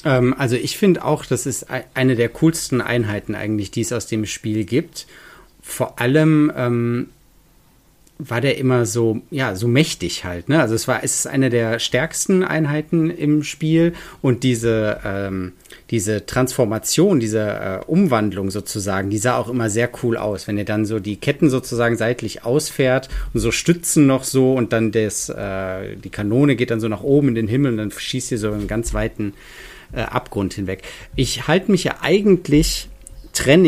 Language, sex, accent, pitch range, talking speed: German, male, German, 110-135 Hz, 180 wpm